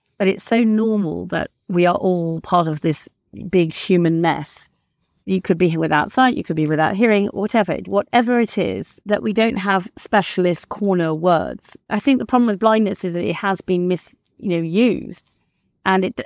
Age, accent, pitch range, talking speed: 30-49, British, 180-245 Hz, 190 wpm